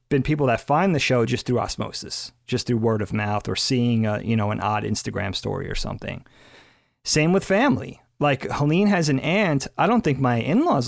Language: English